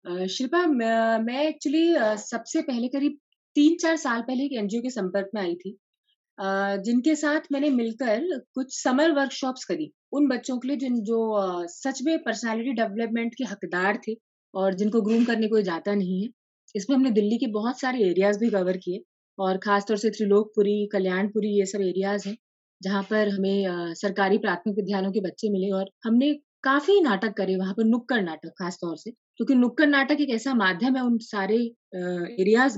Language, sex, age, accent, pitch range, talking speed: Hindi, female, 20-39, native, 200-275 Hz, 180 wpm